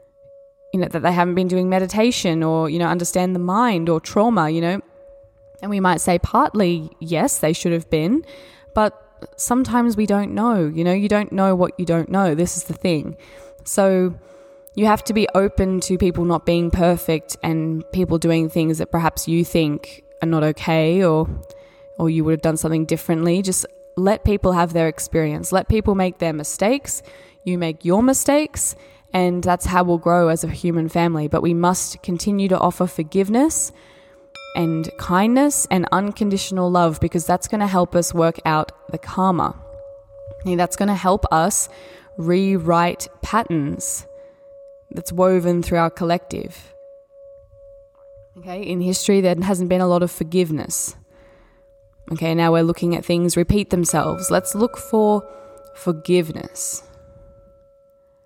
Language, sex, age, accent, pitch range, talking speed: English, female, 10-29, Australian, 165-205 Hz, 160 wpm